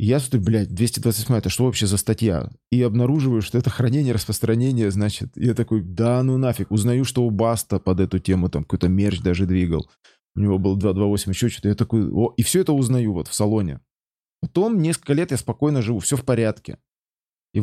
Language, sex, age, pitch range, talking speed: Russian, male, 20-39, 100-125 Hz, 200 wpm